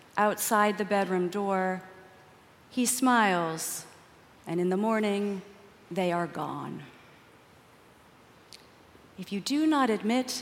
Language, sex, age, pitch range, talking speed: English, female, 40-59, 195-290 Hz, 105 wpm